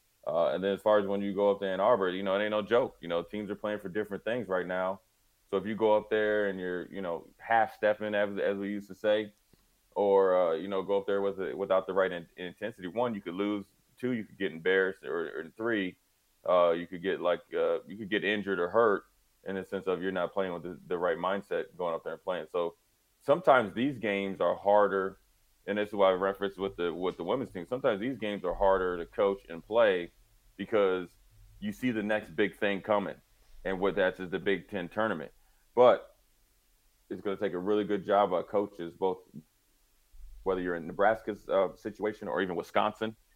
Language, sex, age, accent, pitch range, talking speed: English, male, 20-39, American, 90-105 Hz, 230 wpm